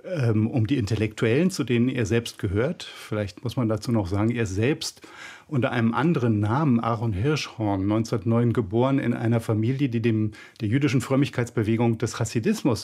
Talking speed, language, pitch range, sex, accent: 160 wpm, German, 115-145 Hz, male, German